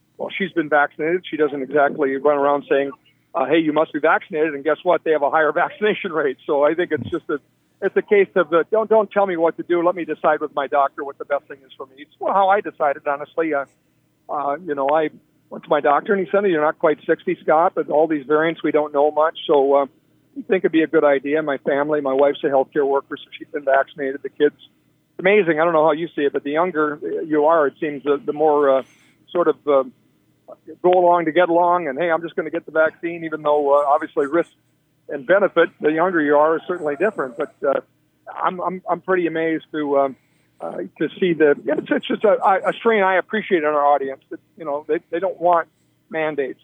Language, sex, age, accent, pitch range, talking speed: English, male, 50-69, American, 145-175 Hz, 245 wpm